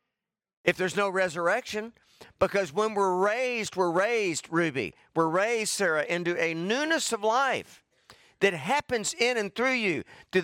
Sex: male